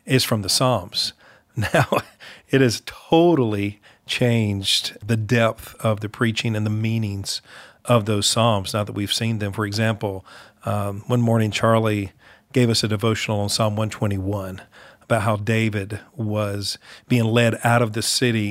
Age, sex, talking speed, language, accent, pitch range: 40-59, male, 155 wpm, English, American, 105-125 Hz